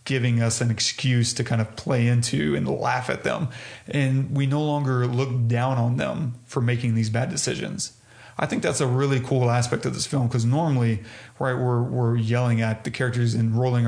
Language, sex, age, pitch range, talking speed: English, male, 30-49, 115-130 Hz, 205 wpm